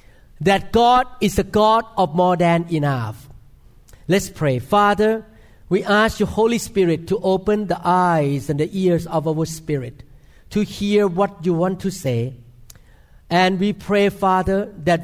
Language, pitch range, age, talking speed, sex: English, 155-210 Hz, 50-69, 155 wpm, male